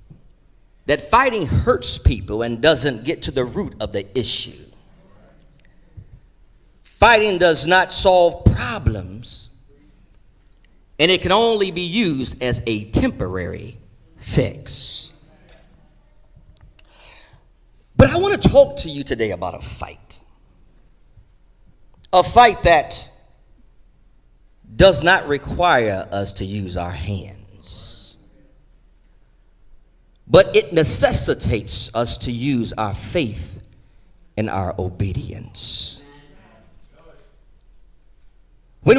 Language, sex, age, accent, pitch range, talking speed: English, male, 40-59, American, 95-145 Hz, 95 wpm